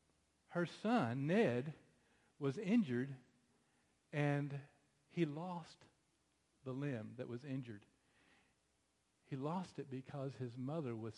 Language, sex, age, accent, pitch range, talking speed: English, male, 50-69, American, 125-180 Hz, 105 wpm